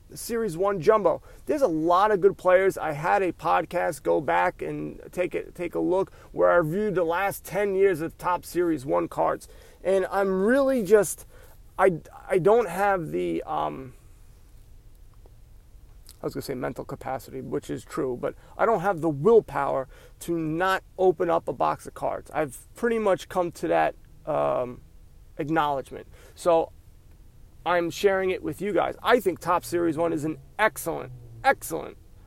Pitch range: 155-200 Hz